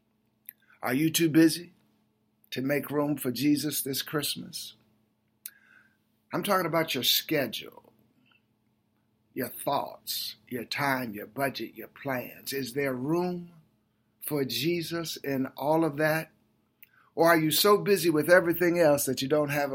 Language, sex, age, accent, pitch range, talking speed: English, male, 50-69, American, 125-165 Hz, 135 wpm